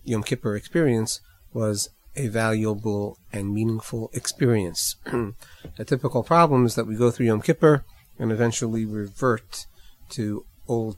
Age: 40-59